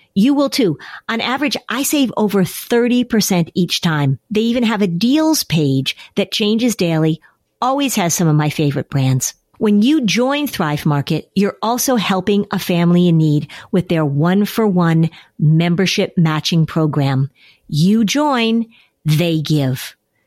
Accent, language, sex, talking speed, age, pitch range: American, English, female, 145 wpm, 50-69, 160-240 Hz